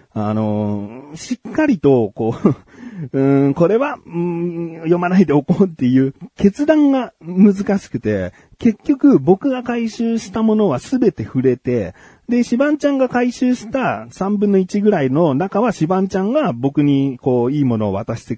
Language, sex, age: Japanese, male, 40-59